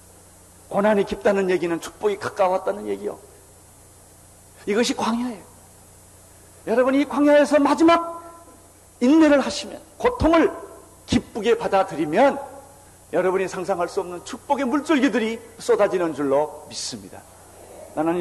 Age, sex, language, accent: 50-69, male, Korean, native